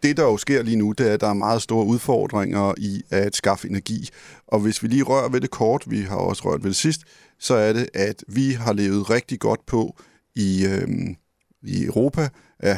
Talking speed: 225 wpm